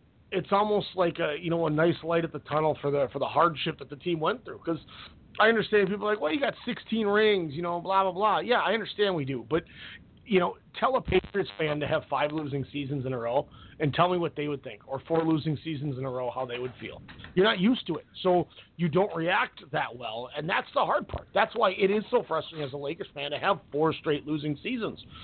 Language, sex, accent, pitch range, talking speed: English, male, American, 145-195 Hz, 255 wpm